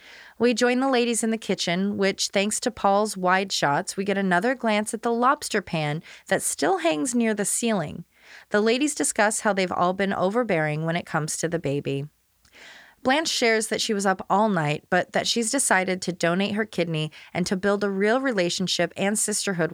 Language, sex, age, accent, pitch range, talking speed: English, female, 20-39, American, 165-235 Hz, 200 wpm